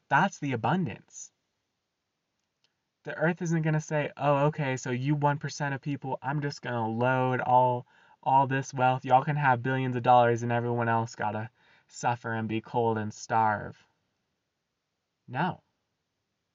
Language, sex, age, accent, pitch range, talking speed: English, male, 20-39, American, 125-170 Hz, 155 wpm